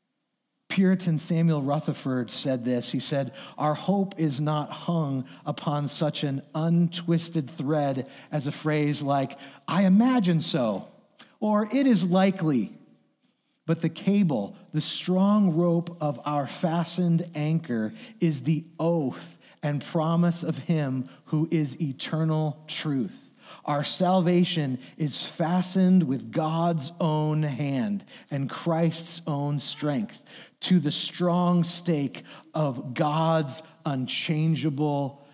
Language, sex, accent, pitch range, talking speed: English, male, American, 150-200 Hz, 115 wpm